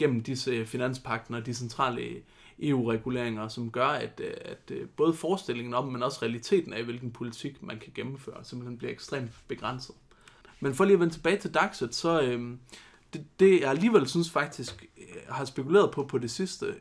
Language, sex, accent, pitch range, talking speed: Danish, male, native, 125-185 Hz, 175 wpm